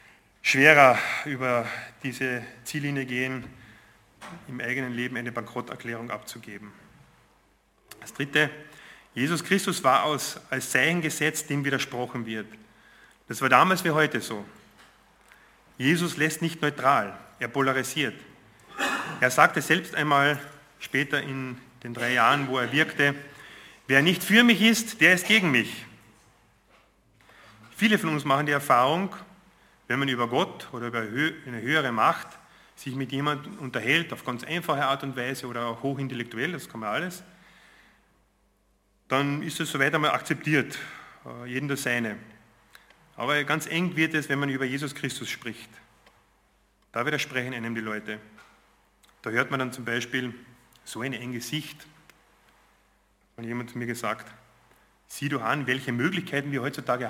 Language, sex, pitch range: German, male, 120-150 Hz